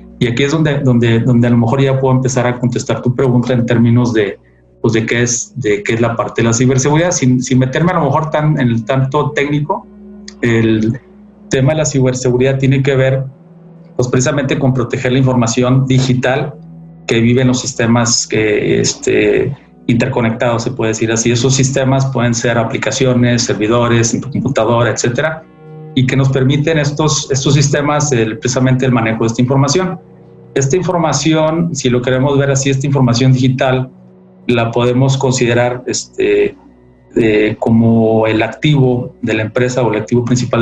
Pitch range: 115-135 Hz